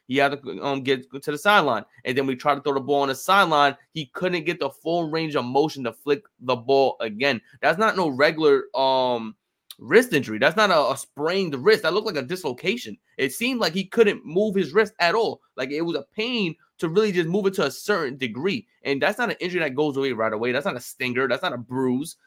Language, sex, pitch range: English, male, 140-195 Hz